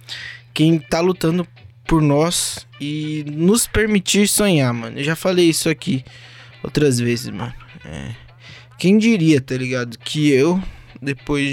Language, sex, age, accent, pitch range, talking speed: Portuguese, male, 20-39, Brazilian, 120-145 Hz, 130 wpm